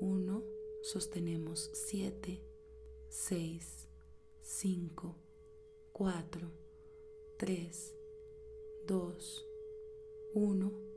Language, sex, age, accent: Spanish, female, 30-49, Venezuelan